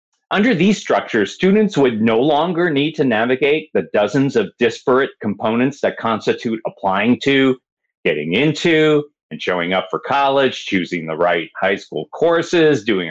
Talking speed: 150 wpm